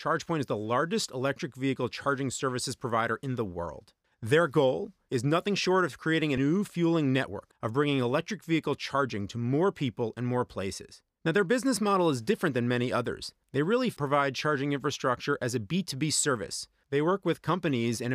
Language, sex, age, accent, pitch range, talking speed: English, male, 30-49, American, 125-175 Hz, 190 wpm